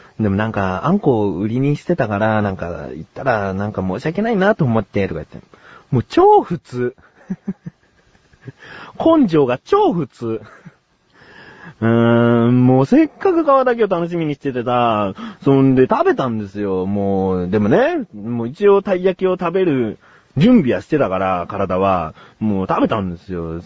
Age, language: 30-49, Japanese